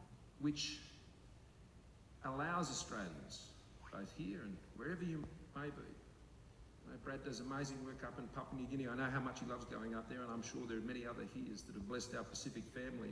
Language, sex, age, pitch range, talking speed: English, male, 50-69, 115-150 Hz, 190 wpm